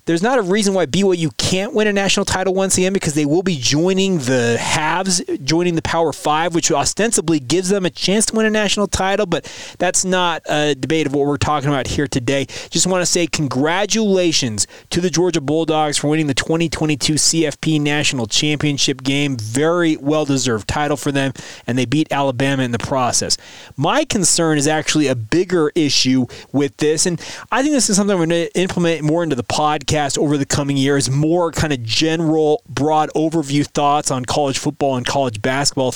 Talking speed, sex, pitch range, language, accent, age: 195 wpm, male, 140-175 Hz, English, American, 30-49